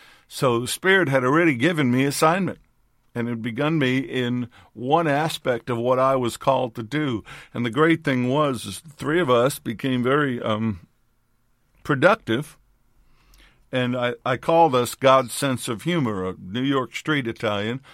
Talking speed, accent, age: 170 wpm, American, 50-69